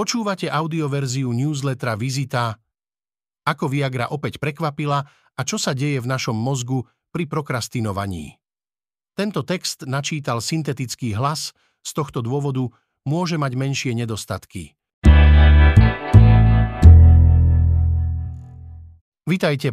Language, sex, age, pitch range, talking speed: Slovak, male, 50-69, 120-145 Hz, 90 wpm